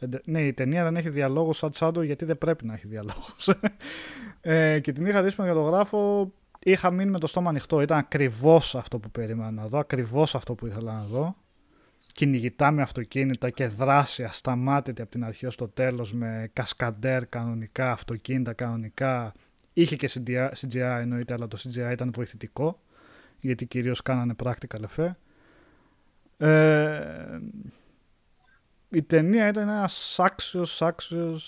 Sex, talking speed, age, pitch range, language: male, 150 wpm, 20-39, 120-155 Hz, Greek